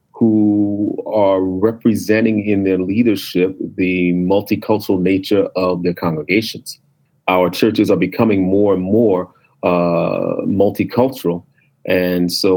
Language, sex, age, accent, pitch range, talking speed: English, male, 40-59, American, 90-110 Hz, 110 wpm